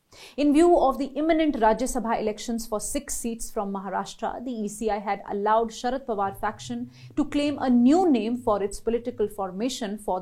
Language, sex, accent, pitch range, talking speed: English, female, Indian, 200-235 Hz, 175 wpm